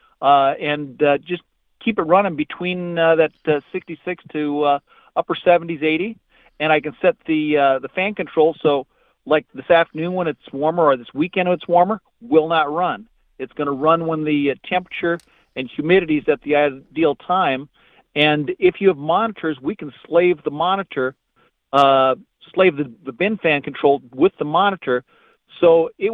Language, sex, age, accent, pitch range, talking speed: English, male, 50-69, American, 145-175 Hz, 180 wpm